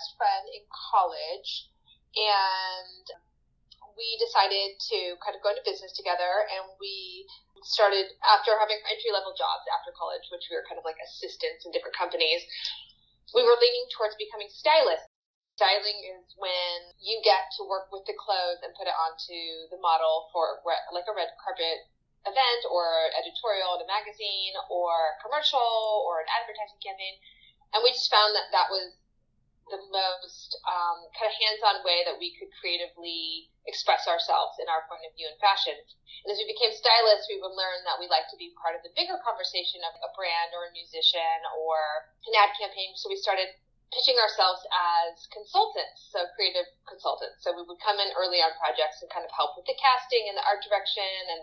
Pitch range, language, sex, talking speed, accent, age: 170-235 Hz, English, female, 185 wpm, American, 20-39